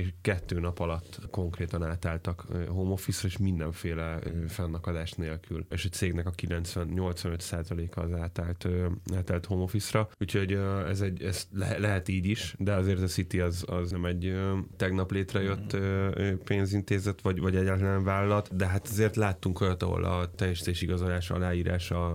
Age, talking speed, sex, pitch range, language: 10-29, 145 wpm, male, 90-95 Hz, Hungarian